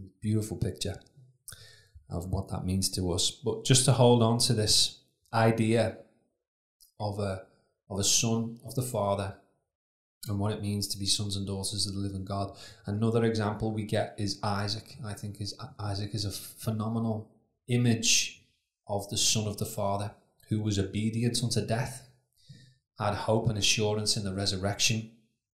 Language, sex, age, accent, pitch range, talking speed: English, male, 20-39, British, 100-115 Hz, 160 wpm